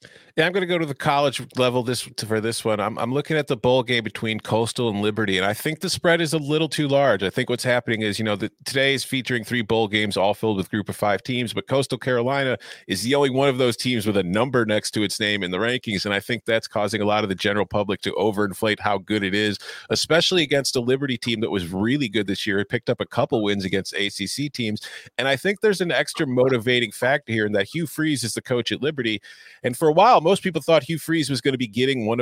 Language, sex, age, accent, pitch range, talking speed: English, male, 40-59, American, 105-135 Hz, 270 wpm